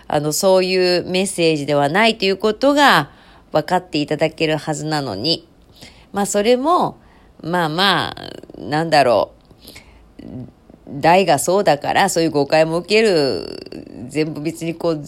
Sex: female